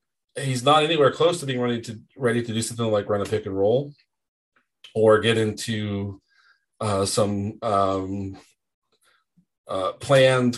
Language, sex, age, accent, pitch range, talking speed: English, male, 30-49, American, 105-125 Hz, 145 wpm